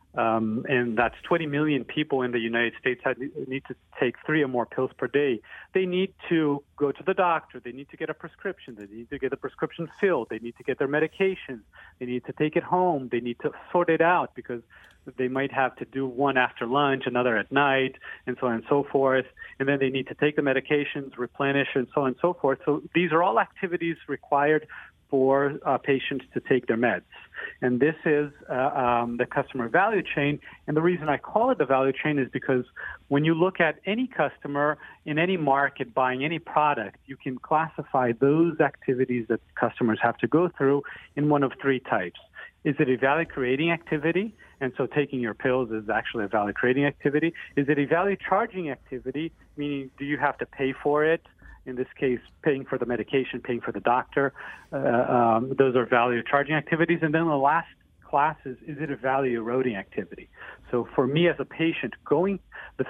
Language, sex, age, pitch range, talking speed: English, male, 40-59, 125-155 Hz, 210 wpm